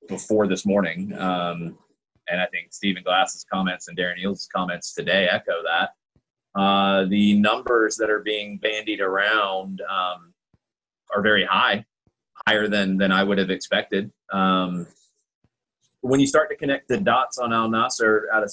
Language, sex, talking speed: English, male, 160 wpm